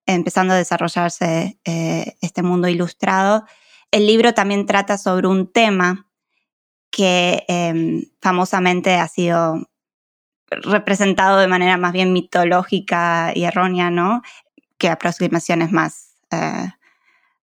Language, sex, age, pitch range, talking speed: Spanish, female, 20-39, 180-205 Hz, 110 wpm